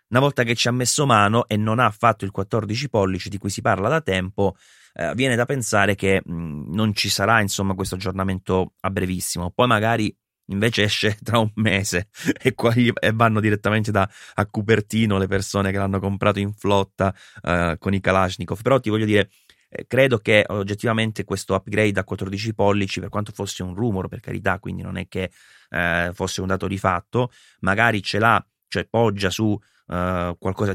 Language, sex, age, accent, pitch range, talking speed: Italian, male, 30-49, native, 95-110 Hz, 190 wpm